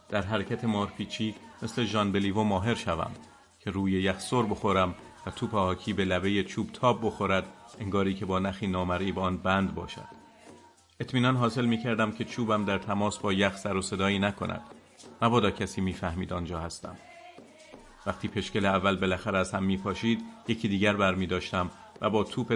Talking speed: 175 wpm